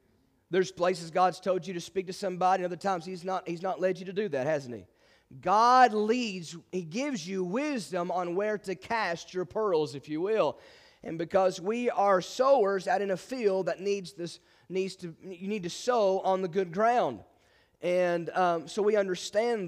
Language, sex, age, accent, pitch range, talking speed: English, male, 30-49, American, 180-235 Hz, 200 wpm